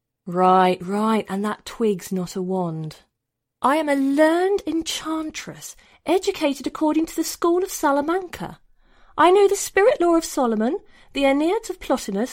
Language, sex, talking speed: English, female, 150 wpm